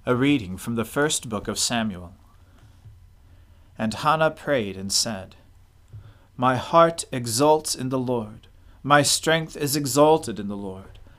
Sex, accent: male, American